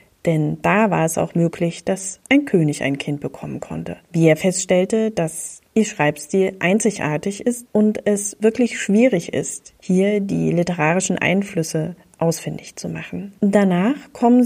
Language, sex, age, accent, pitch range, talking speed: German, female, 30-49, German, 160-205 Hz, 145 wpm